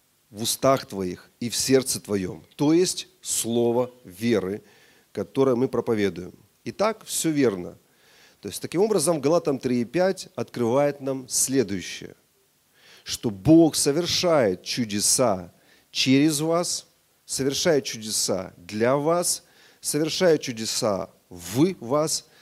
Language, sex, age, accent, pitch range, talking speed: Russian, male, 40-59, native, 115-155 Hz, 110 wpm